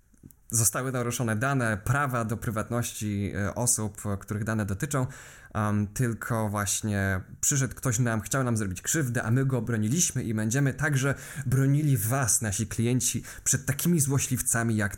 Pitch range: 100-130 Hz